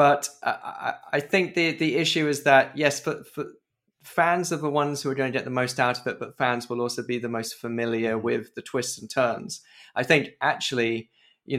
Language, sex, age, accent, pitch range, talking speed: English, male, 20-39, British, 115-140 Hz, 215 wpm